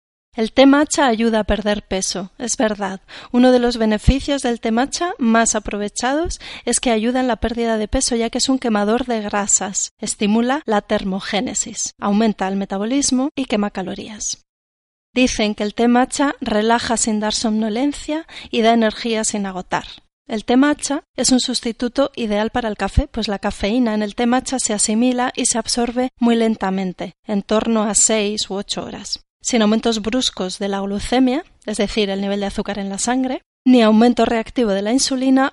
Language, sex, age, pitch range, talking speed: Spanish, female, 30-49, 210-250 Hz, 180 wpm